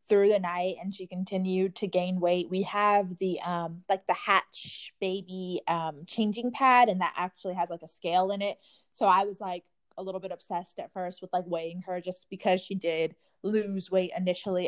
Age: 20-39